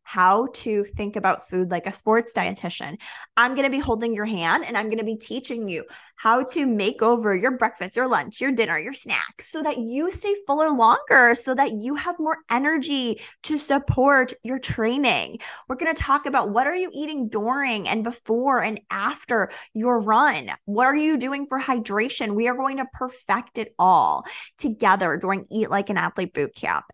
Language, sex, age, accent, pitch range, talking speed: English, female, 20-39, American, 205-265 Hz, 195 wpm